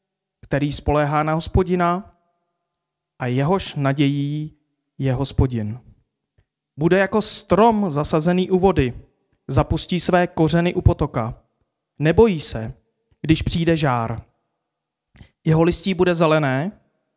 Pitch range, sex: 135-175 Hz, male